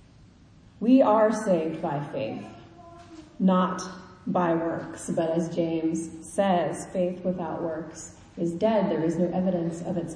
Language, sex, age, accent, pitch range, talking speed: English, female, 30-49, American, 170-225 Hz, 135 wpm